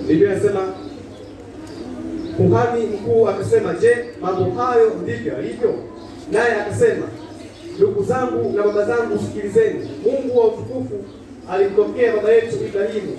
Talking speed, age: 115 wpm, 30-49